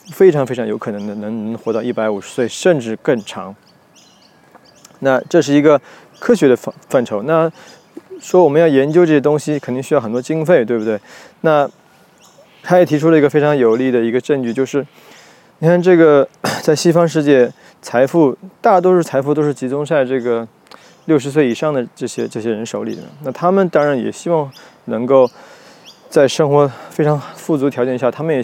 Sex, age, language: male, 20-39, Chinese